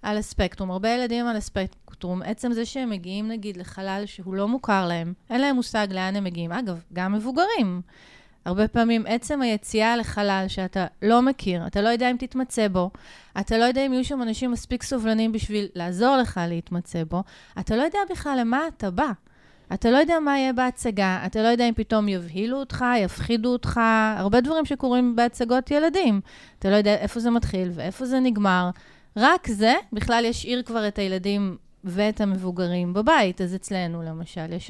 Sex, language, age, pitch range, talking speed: female, Hebrew, 30-49, 185-235 Hz, 170 wpm